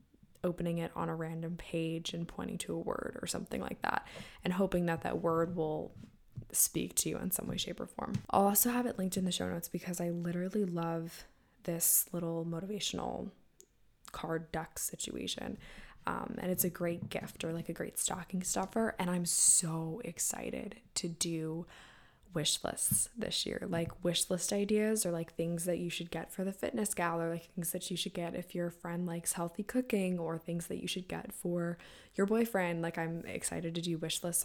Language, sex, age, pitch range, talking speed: English, female, 10-29, 170-195 Hz, 200 wpm